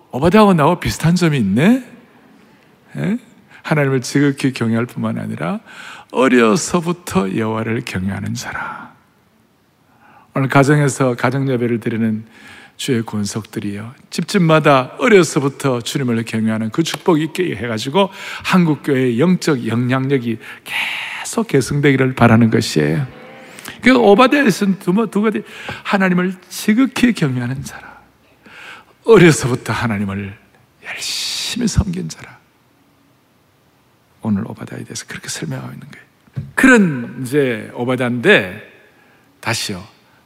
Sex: male